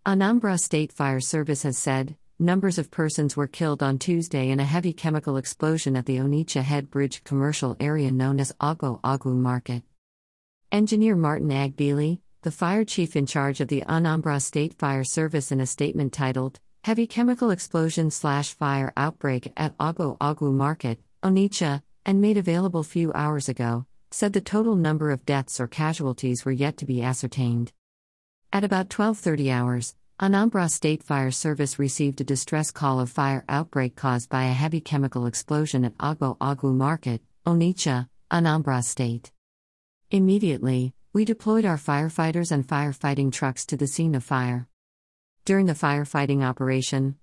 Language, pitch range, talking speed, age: English, 130-160 Hz, 155 wpm, 50-69